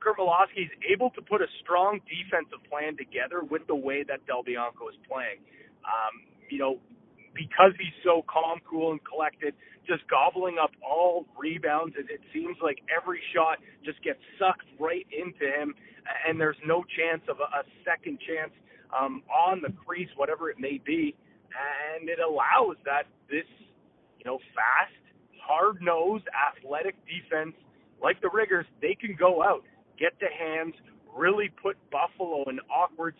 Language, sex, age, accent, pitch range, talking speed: English, male, 30-49, American, 155-210 Hz, 155 wpm